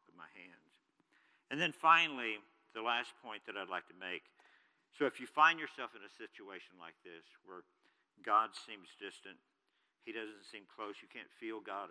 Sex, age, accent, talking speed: male, 50-69, American, 175 wpm